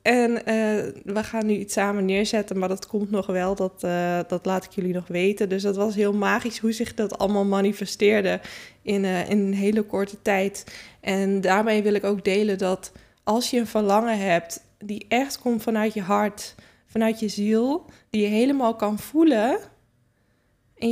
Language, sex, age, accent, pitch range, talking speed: Dutch, female, 20-39, Dutch, 200-230 Hz, 180 wpm